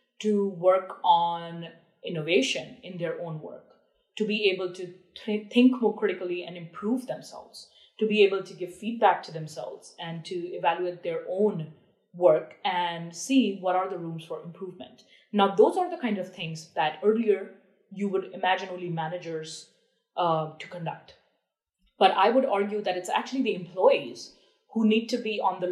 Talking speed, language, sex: 170 wpm, English, female